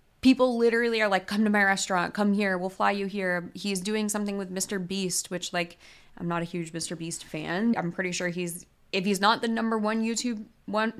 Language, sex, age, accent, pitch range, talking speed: English, female, 20-39, American, 180-220 Hz, 225 wpm